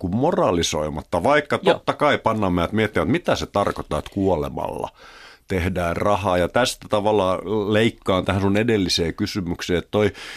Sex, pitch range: male, 85-105 Hz